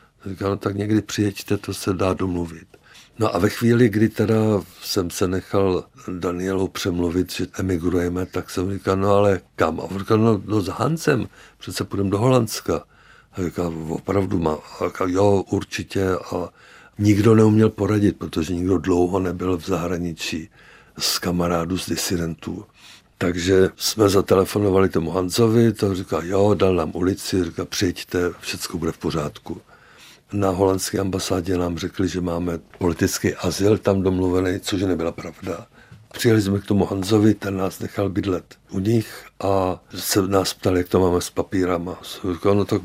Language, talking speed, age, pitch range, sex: Czech, 160 wpm, 60-79, 90-100 Hz, male